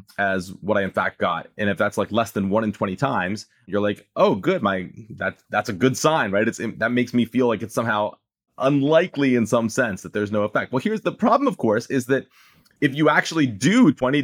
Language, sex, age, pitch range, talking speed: English, male, 30-49, 115-150 Hz, 240 wpm